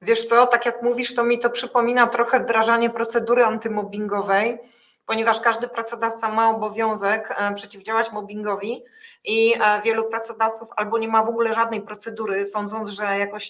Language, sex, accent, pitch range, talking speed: Polish, female, native, 215-245 Hz, 145 wpm